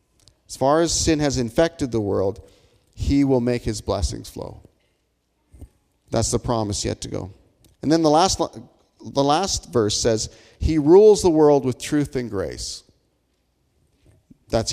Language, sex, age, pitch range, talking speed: English, male, 40-59, 100-145 Hz, 150 wpm